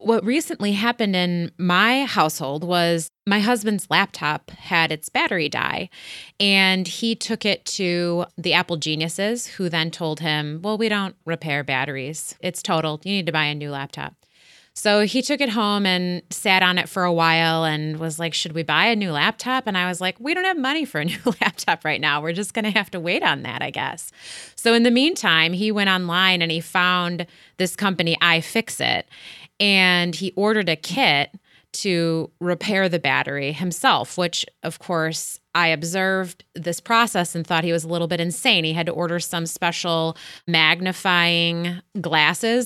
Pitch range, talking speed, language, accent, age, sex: 165-205 Hz, 185 wpm, English, American, 30-49, female